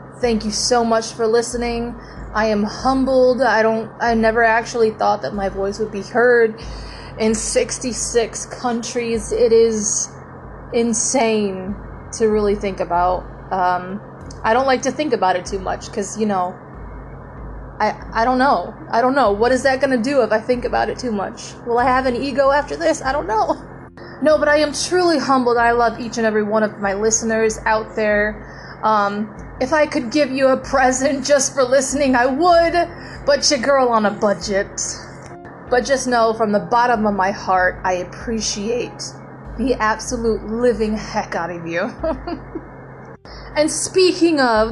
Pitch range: 210-260 Hz